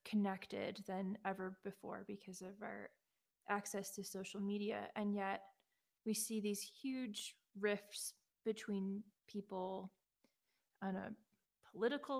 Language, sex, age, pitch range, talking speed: English, female, 20-39, 195-220 Hz, 115 wpm